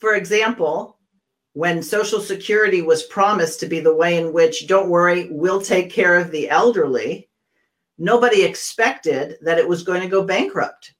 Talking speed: 165 wpm